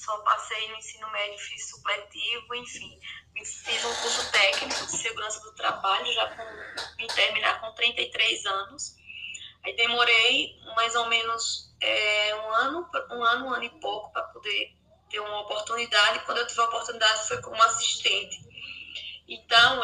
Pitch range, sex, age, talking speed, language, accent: 210-250 Hz, female, 10-29, 150 wpm, Portuguese, Brazilian